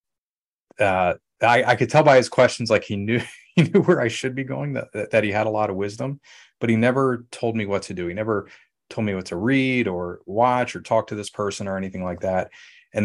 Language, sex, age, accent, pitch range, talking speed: English, male, 30-49, American, 95-110 Hz, 245 wpm